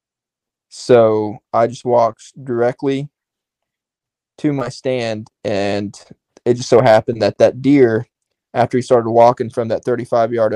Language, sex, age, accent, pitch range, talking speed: English, male, 20-39, American, 115-135 Hz, 130 wpm